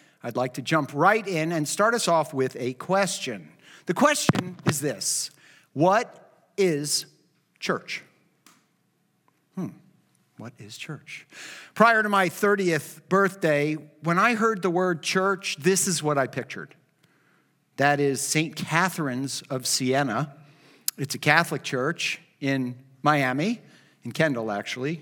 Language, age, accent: English, 50-69, American